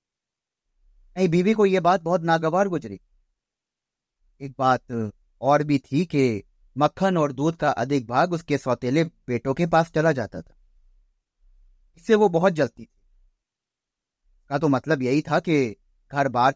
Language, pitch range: Hindi, 105-170 Hz